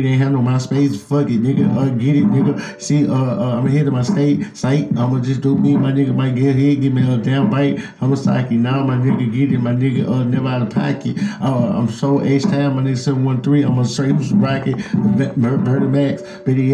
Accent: American